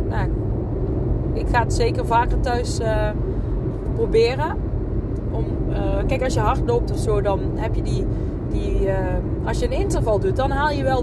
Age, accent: 20-39, Dutch